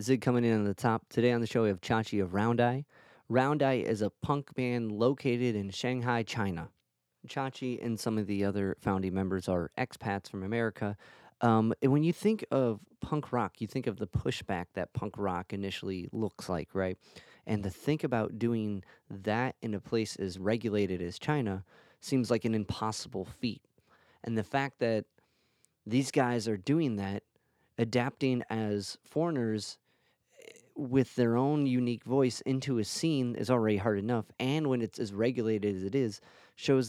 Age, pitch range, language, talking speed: 30-49, 100-125 Hz, English, 175 wpm